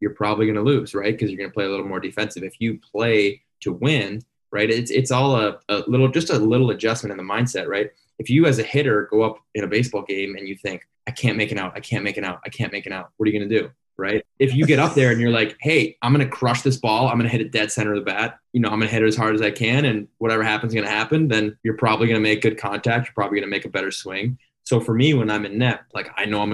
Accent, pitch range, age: American, 105-120 Hz, 20-39